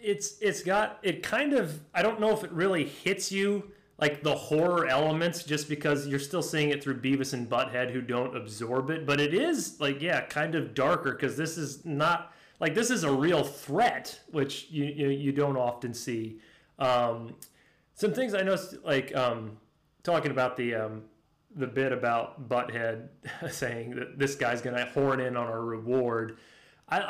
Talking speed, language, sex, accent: 185 wpm, English, male, American